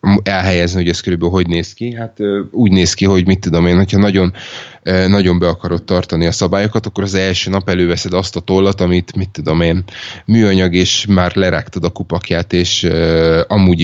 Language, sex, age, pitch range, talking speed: Hungarian, male, 20-39, 85-95 Hz, 200 wpm